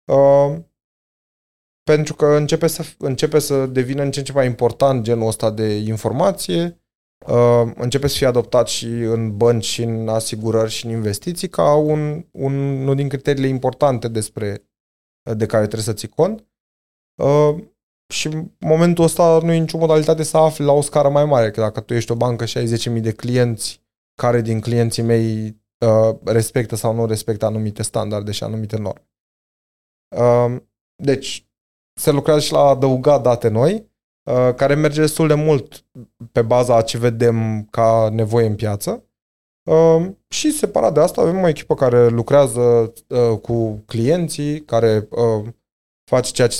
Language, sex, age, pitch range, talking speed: Romanian, male, 20-39, 115-145 Hz, 155 wpm